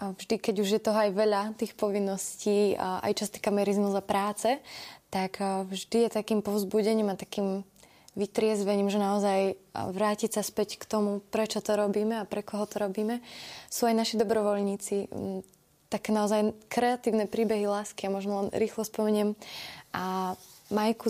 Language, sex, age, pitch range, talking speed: Slovak, female, 20-39, 200-220 Hz, 160 wpm